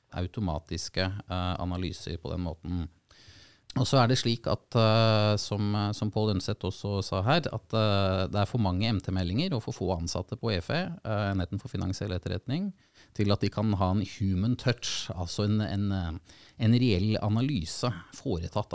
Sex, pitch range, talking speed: male, 95-115 Hz, 175 wpm